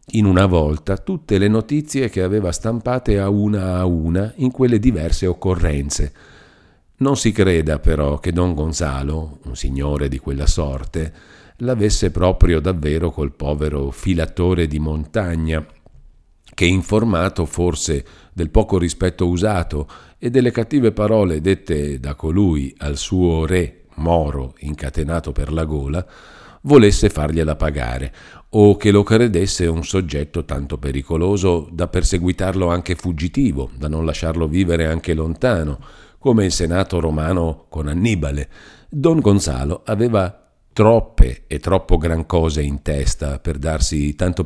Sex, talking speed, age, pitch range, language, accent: male, 135 wpm, 50-69, 75-100 Hz, Italian, native